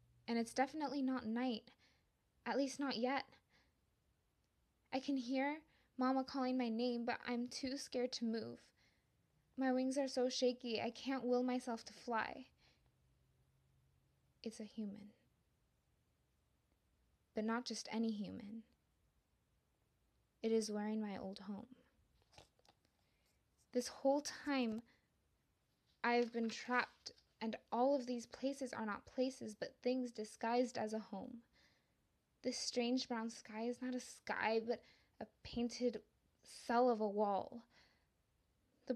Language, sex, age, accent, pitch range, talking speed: English, female, 10-29, American, 215-250 Hz, 130 wpm